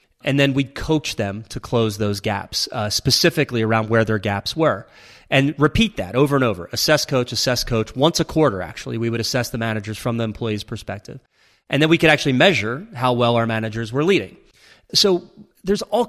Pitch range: 110-140 Hz